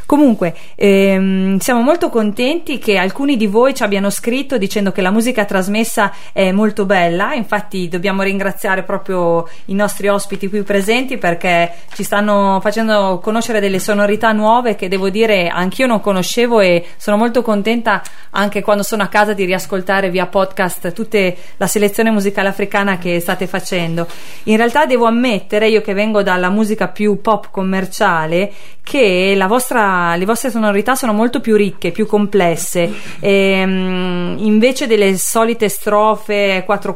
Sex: female